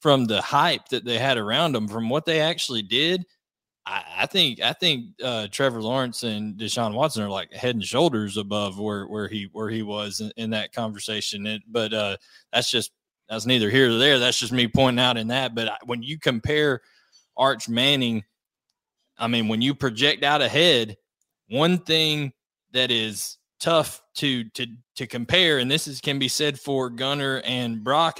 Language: English